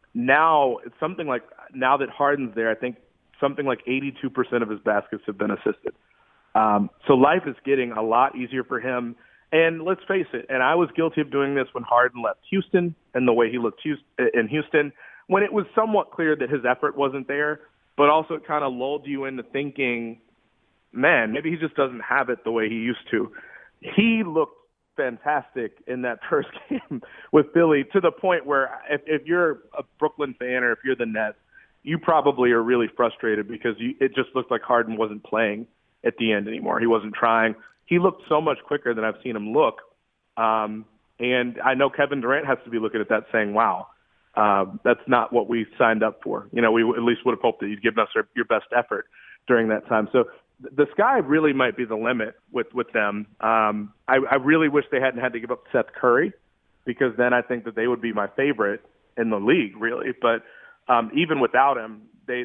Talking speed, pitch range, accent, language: 215 wpm, 115-145 Hz, American, English